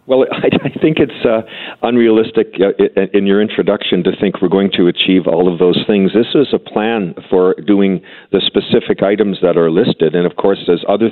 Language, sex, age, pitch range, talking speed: English, male, 50-69, 90-100 Hz, 195 wpm